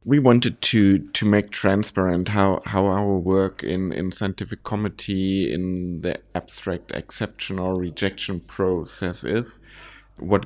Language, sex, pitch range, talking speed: English, male, 90-105 Hz, 130 wpm